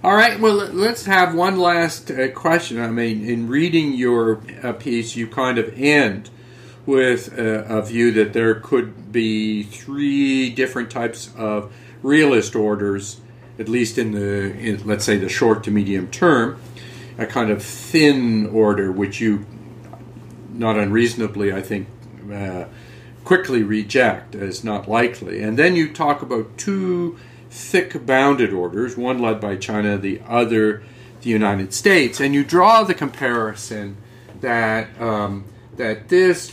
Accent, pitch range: American, 105-125 Hz